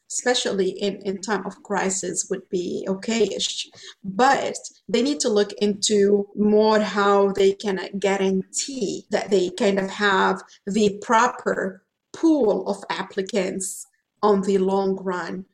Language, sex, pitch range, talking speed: English, female, 195-215 Hz, 130 wpm